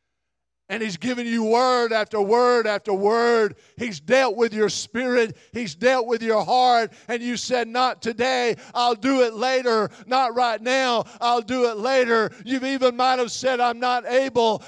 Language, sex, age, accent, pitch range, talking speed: English, male, 50-69, American, 220-265 Hz, 180 wpm